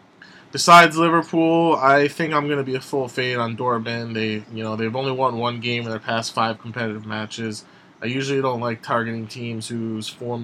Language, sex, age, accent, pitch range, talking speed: English, male, 20-39, American, 110-130 Hz, 200 wpm